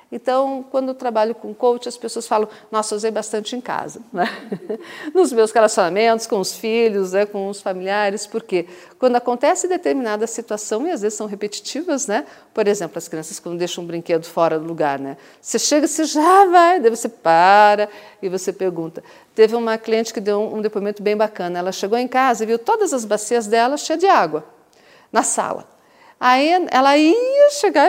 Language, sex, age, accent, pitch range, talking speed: Portuguese, female, 50-69, Brazilian, 210-330 Hz, 185 wpm